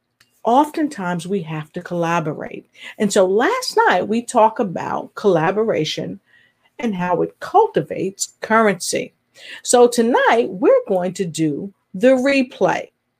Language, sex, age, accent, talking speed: English, female, 40-59, American, 120 wpm